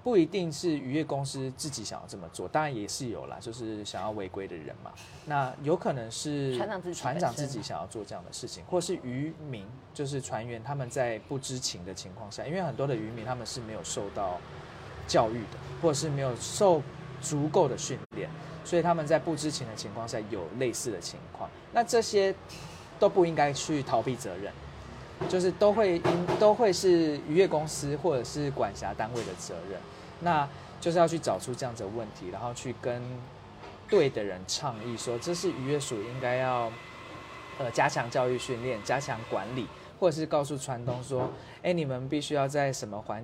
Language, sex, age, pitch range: Chinese, male, 20-39, 115-155 Hz